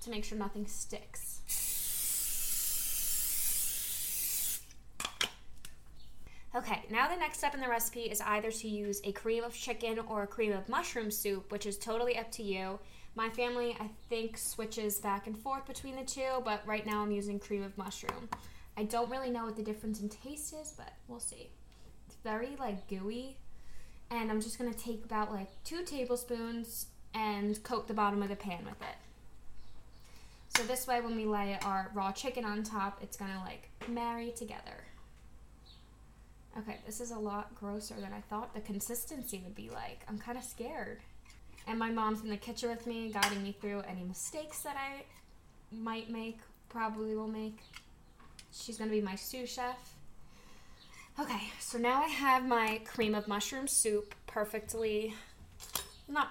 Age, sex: 10-29, female